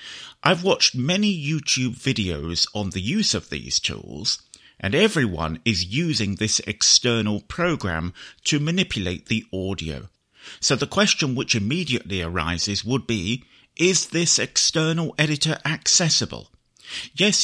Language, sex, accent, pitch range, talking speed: English, male, British, 95-150 Hz, 125 wpm